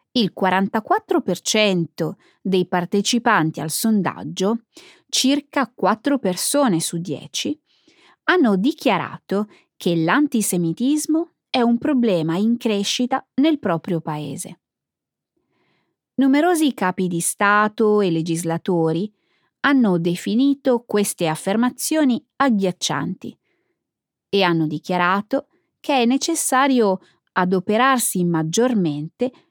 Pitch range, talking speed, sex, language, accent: 180-265 Hz, 85 wpm, female, Italian, native